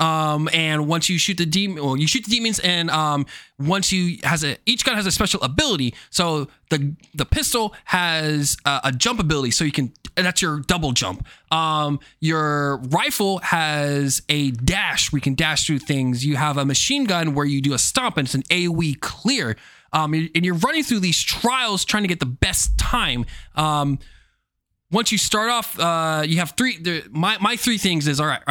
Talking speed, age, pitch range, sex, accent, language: 200 wpm, 20-39, 145-195 Hz, male, American, English